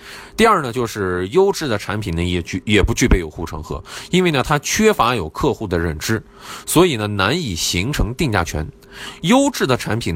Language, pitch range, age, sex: Chinese, 85-130 Hz, 20-39, male